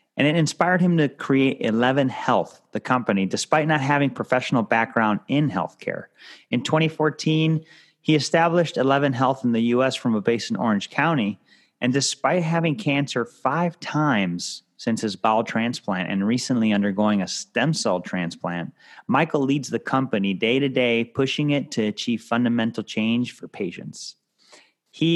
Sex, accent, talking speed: male, American, 155 wpm